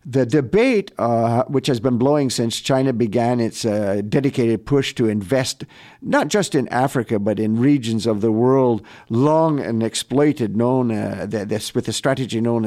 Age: 50-69